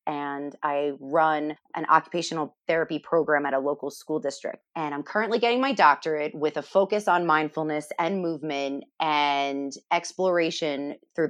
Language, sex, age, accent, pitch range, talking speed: English, female, 30-49, American, 145-175 Hz, 150 wpm